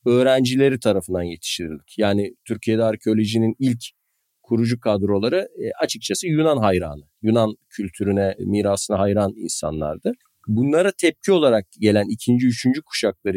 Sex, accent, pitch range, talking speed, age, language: male, native, 105-130 Hz, 110 wpm, 40-59, Turkish